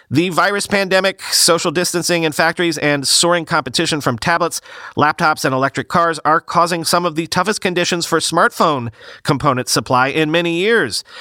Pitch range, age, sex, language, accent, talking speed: 120-175 Hz, 40-59, male, English, American, 160 wpm